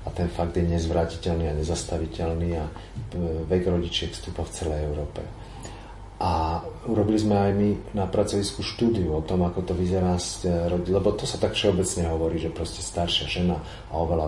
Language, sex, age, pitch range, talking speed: Slovak, male, 40-59, 85-95 Hz, 165 wpm